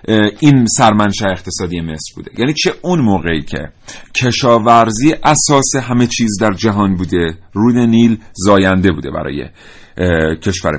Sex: male